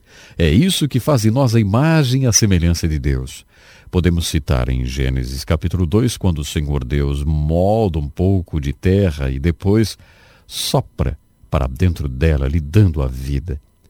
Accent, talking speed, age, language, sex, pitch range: Brazilian, 165 wpm, 50-69, English, male, 75-115 Hz